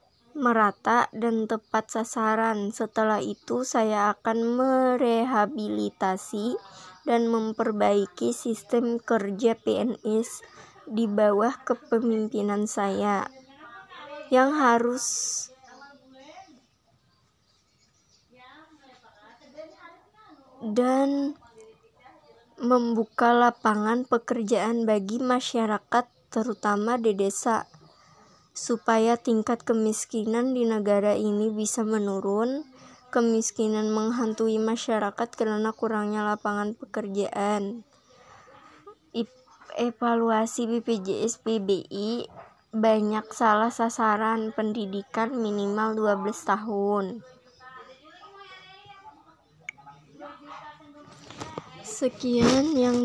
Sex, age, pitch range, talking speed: male, 20-39, 215-250 Hz, 65 wpm